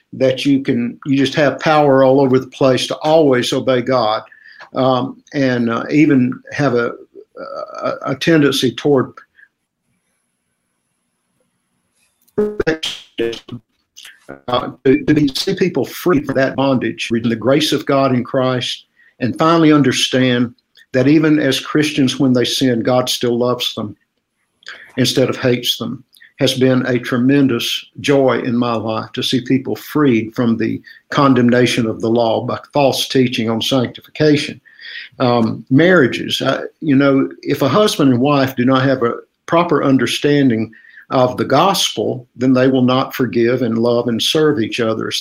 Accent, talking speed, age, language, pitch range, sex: American, 150 wpm, 60-79, English, 120-140 Hz, male